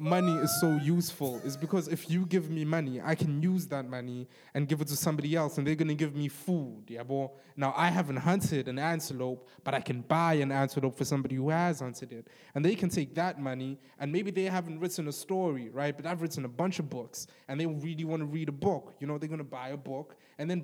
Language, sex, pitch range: English, male, 140-170 Hz